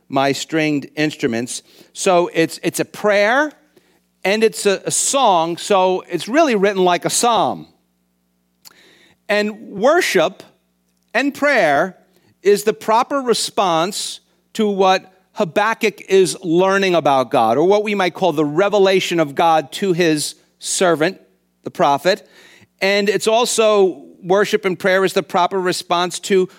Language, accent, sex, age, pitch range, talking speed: English, American, male, 50-69, 145-205 Hz, 135 wpm